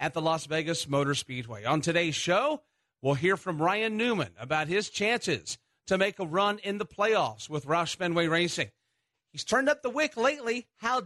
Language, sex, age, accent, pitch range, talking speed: English, male, 40-59, American, 150-215 Hz, 190 wpm